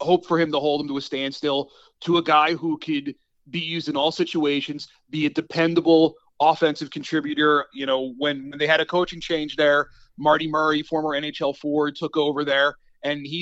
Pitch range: 150-170 Hz